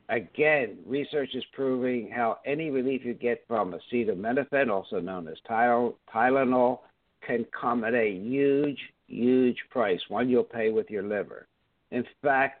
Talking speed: 145 wpm